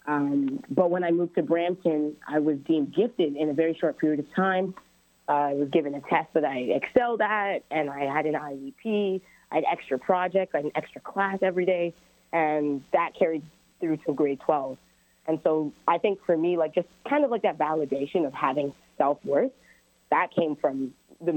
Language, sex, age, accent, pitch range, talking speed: English, female, 30-49, American, 150-180 Hz, 200 wpm